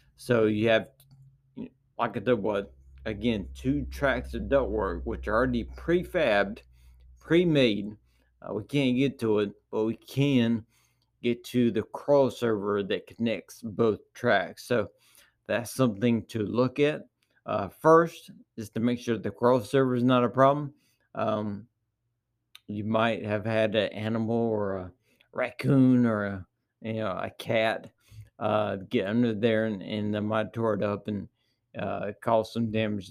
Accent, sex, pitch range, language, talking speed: American, male, 110-125 Hz, English, 160 wpm